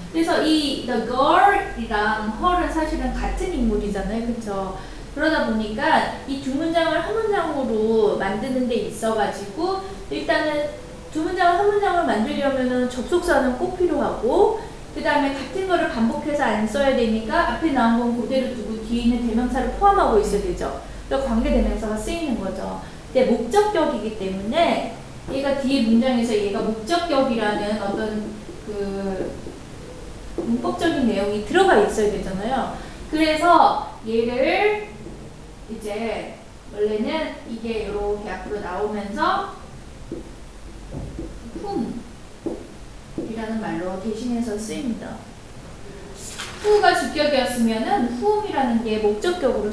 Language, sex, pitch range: Korean, female, 215-315 Hz